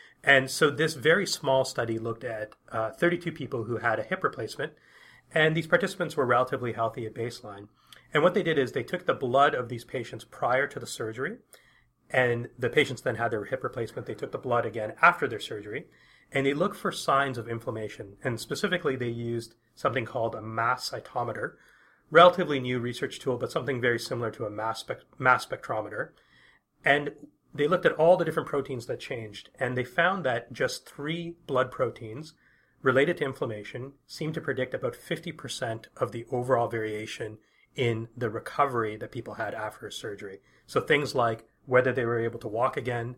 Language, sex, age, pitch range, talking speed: English, male, 30-49, 115-145 Hz, 185 wpm